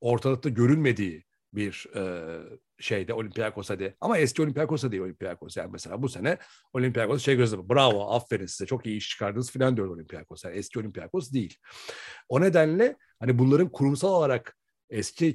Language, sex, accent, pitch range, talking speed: Turkish, male, native, 110-150 Hz, 155 wpm